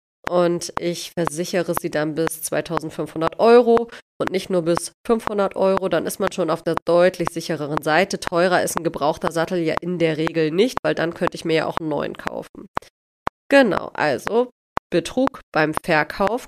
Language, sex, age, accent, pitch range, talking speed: German, female, 30-49, German, 180-225 Hz, 175 wpm